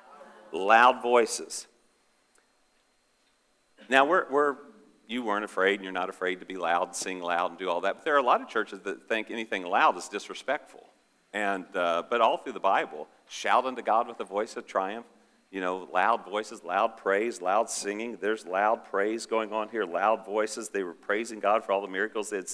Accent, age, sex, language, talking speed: American, 50-69, male, English, 195 wpm